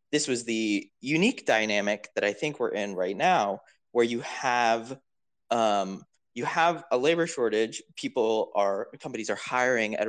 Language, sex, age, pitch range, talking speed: English, male, 20-39, 105-140 Hz, 160 wpm